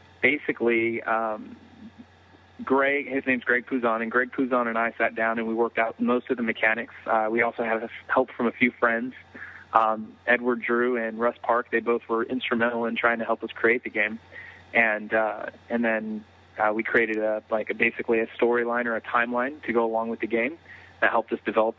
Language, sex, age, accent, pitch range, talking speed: English, male, 30-49, American, 110-120 Hz, 205 wpm